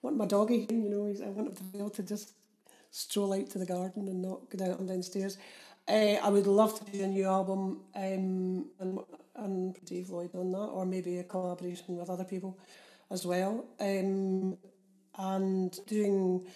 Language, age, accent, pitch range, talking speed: English, 40-59, British, 190-215 Hz, 190 wpm